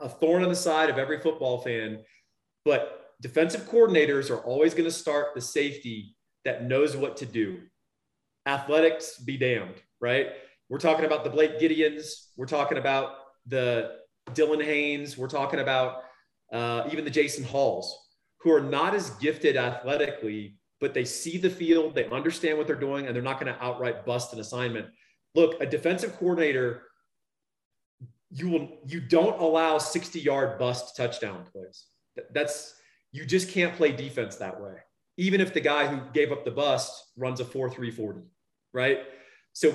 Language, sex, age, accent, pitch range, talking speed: English, male, 30-49, American, 125-160 Hz, 165 wpm